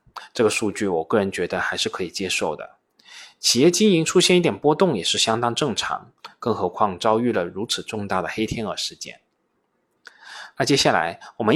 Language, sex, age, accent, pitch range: Chinese, male, 20-39, native, 105-130 Hz